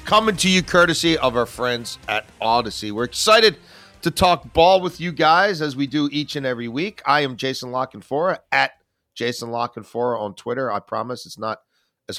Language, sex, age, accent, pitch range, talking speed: English, male, 40-59, American, 125-170 Hz, 185 wpm